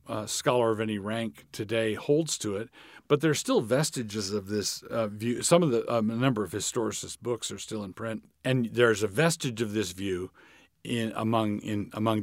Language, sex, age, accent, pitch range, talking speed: English, male, 50-69, American, 100-120 Hz, 205 wpm